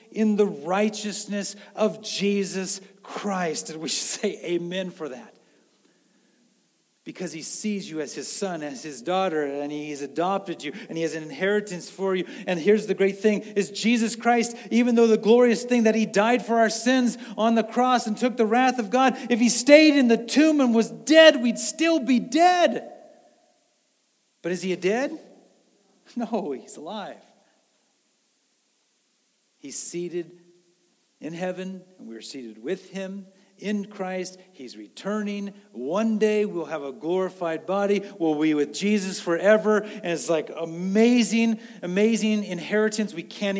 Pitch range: 170-230 Hz